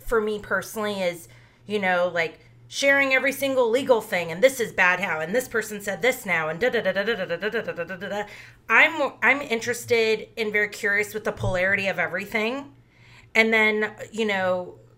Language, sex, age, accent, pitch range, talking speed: English, female, 30-49, American, 180-225 Hz, 195 wpm